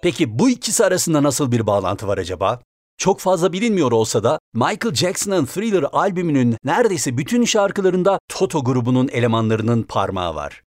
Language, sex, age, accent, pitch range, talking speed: Turkish, male, 60-79, native, 120-175 Hz, 145 wpm